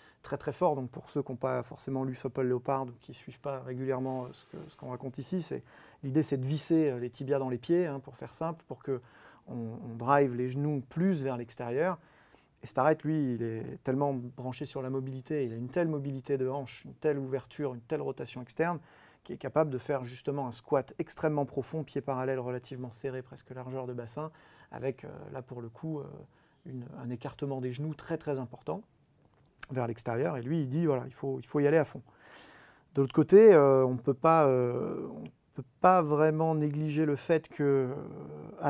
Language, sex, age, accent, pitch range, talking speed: French, male, 30-49, French, 125-150 Hz, 210 wpm